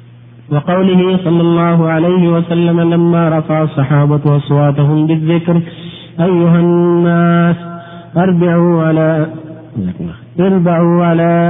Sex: male